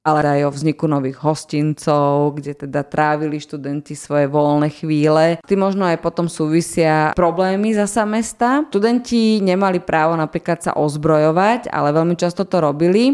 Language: Slovak